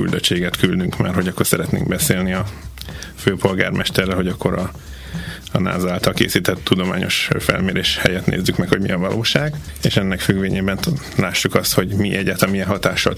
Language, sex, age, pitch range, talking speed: Hungarian, male, 30-49, 90-100 Hz, 160 wpm